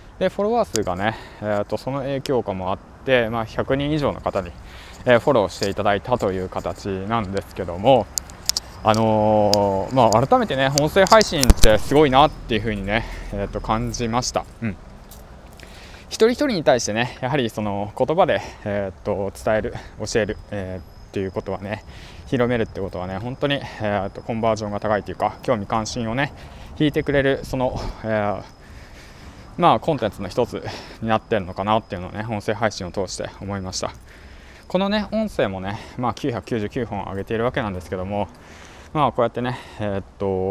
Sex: male